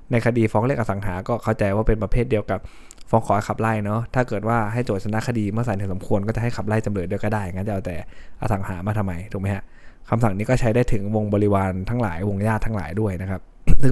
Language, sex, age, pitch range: Thai, male, 20-39, 100-120 Hz